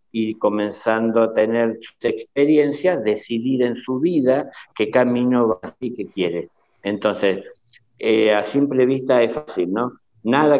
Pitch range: 100-120 Hz